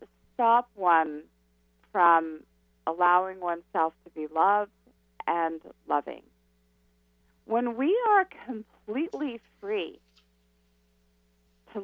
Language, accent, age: English, American, 50-69